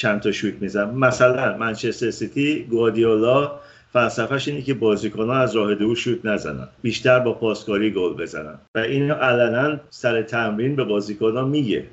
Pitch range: 105-130 Hz